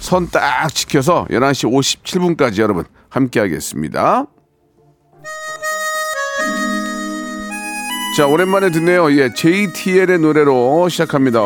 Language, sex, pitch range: Korean, male, 115-175 Hz